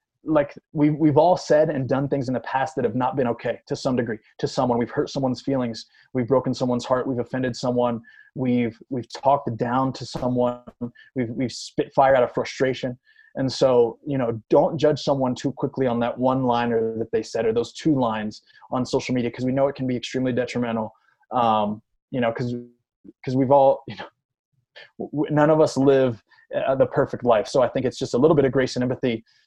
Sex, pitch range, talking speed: male, 120-145 Hz, 215 wpm